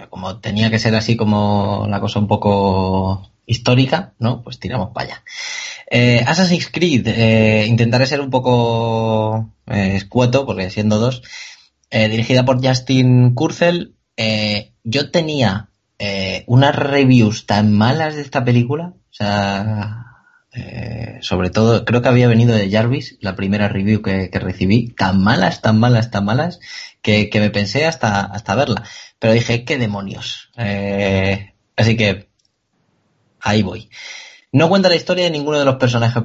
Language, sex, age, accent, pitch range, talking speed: Spanish, male, 20-39, Spanish, 105-125 Hz, 155 wpm